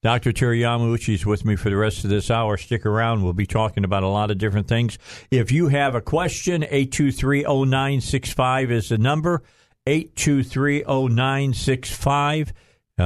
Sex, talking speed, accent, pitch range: male, 145 wpm, American, 110-140 Hz